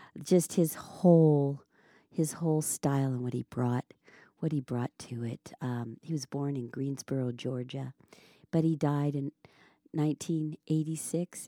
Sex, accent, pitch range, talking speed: female, American, 125-155 Hz, 140 wpm